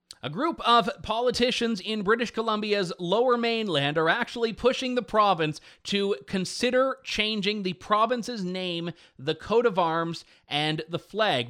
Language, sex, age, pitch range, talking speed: English, male, 30-49, 165-220 Hz, 140 wpm